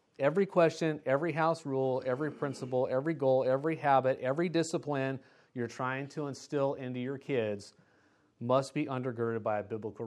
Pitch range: 110-140 Hz